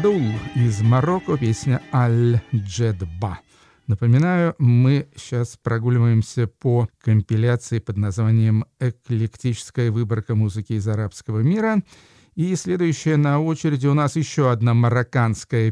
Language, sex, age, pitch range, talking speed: Russian, male, 50-69, 115-145 Hz, 105 wpm